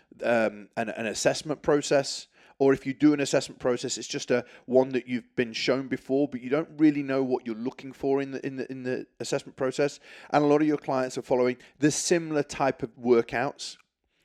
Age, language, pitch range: 30-49, English, 130-170 Hz